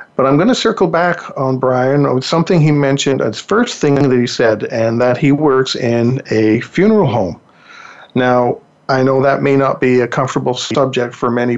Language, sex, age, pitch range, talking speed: English, male, 50-69, 115-145 Hz, 195 wpm